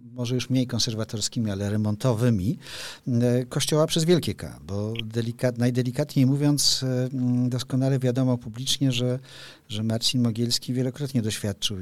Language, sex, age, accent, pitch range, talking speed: Polish, male, 50-69, native, 105-125 Hz, 115 wpm